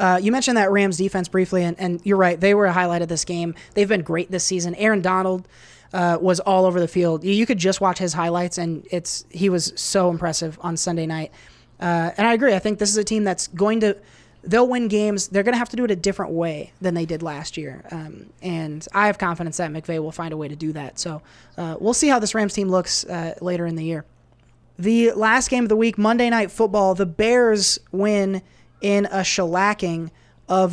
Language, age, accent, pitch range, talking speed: English, 20-39, American, 170-200 Hz, 240 wpm